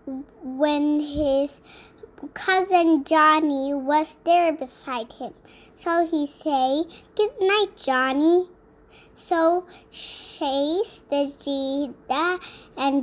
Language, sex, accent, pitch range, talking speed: English, male, American, 285-365 Hz, 85 wpm